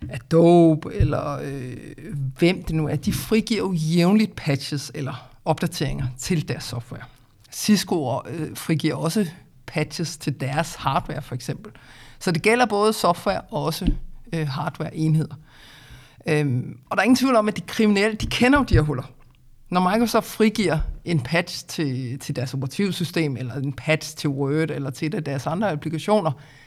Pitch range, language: 140-185 Hz, Danish